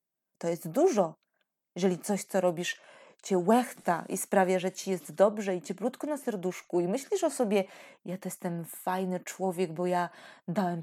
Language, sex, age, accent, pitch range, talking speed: Polish, female, 20-39, native, 175-200 Hz, 170 wpm